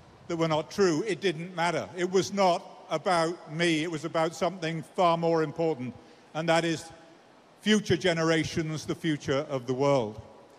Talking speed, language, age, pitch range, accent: 165 wpm, English, 50-69, 160-185 Hz, British